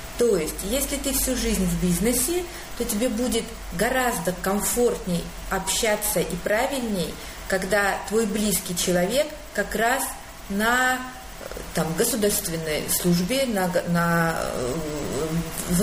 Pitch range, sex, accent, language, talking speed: 180-240 Hz, female, native, Russian, 110 wpm